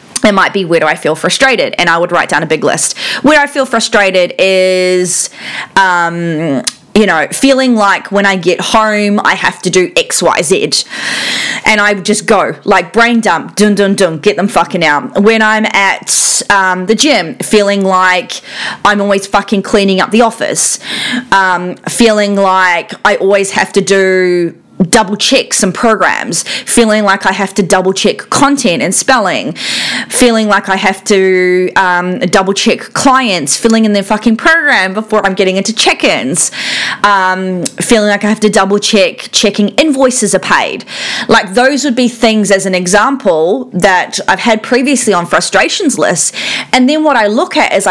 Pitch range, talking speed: 185-230 Hz, 170 wpm